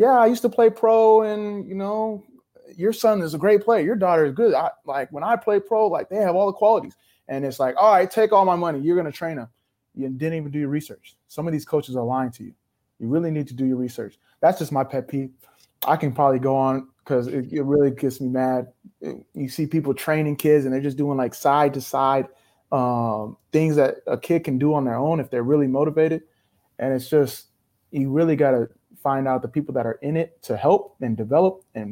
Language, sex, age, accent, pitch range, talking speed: English, male, 30-49, American, 120-160 Hz, 245 wpm